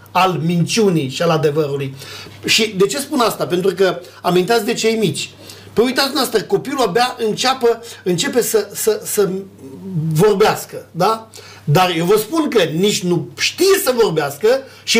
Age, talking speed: 50-69, 155 wpm